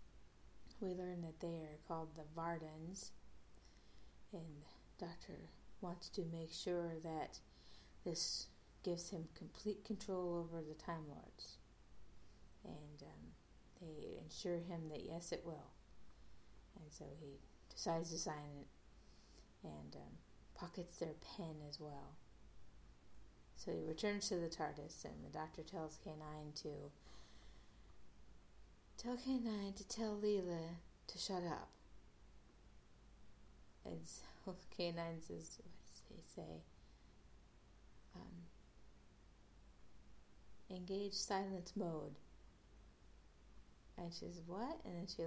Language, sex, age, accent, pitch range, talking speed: English, female, 30-49, American, 105-175 Hz, 115 wpm